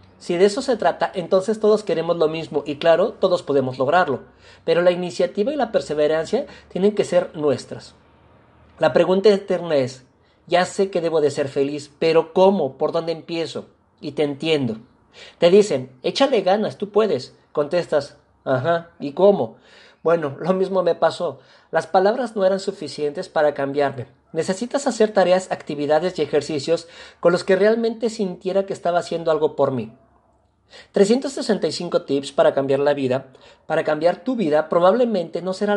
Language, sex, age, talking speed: Spanish, male, 40-59, 160 wpm